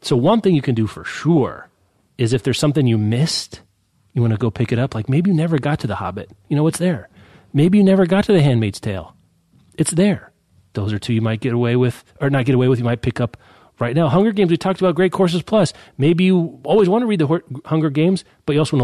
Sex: male